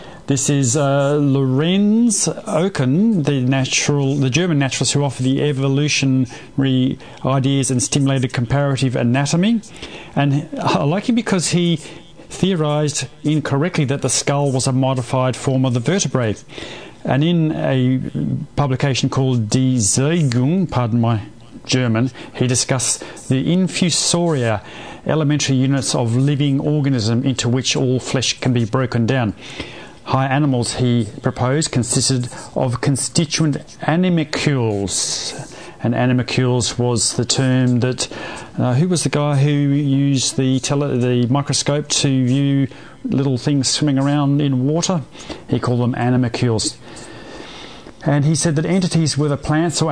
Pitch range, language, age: 125-150 Hz, English, 40-59